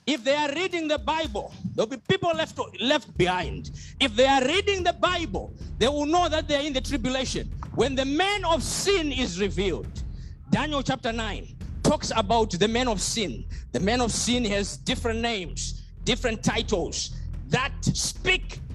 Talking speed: 175 wpm